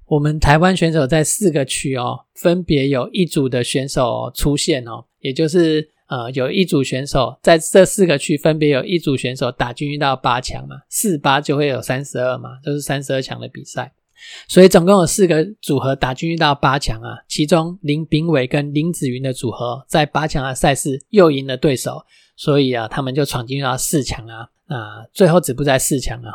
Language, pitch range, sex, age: Chinese, 130-165 Hz, male, 20-39